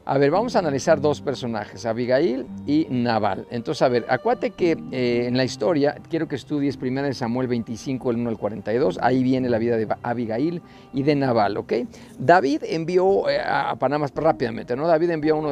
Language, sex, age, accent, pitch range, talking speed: Spanish, male, 50-69, Mexican, 120-165 Hz, 195 wpm